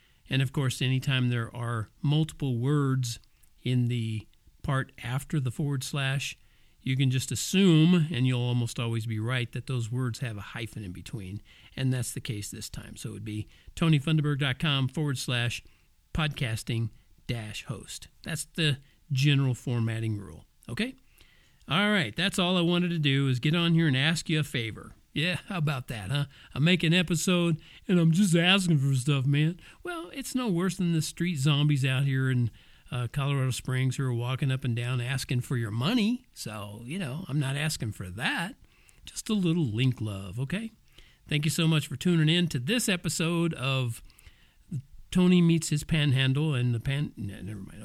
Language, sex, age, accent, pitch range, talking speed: English, male, 50-69, American, 120-160 Hz, 185 wpm